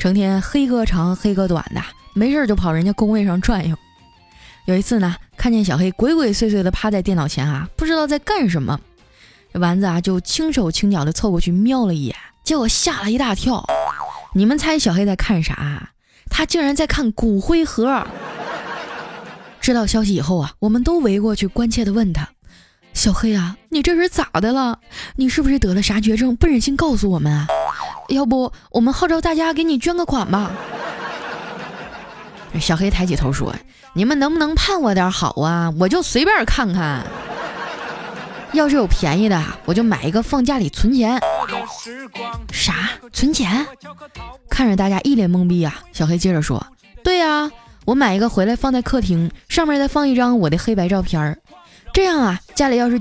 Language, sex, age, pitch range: Chinese, female, 20-39, 180-265 Hz